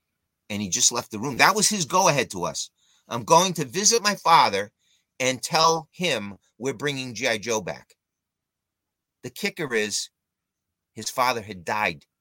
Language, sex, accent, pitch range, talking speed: English, male, American, 90-135 Hz, 160 wpm